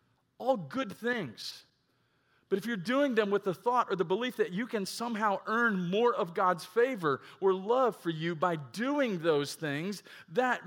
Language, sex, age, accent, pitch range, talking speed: English, male, 50-69, American, 175-230 Hz, 180 wpm